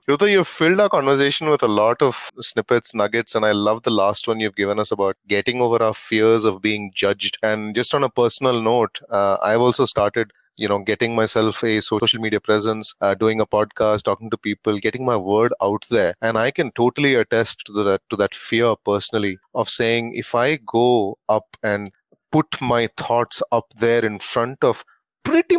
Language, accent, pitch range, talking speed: English, Indian, 105-125 Hz, 195 wpm